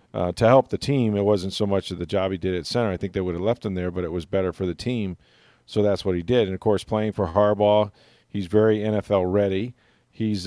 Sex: male